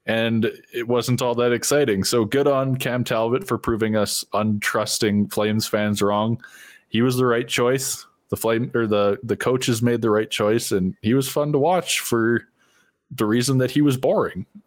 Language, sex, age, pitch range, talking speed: English, male, 20-39, 105-125 Hz, 190 wpm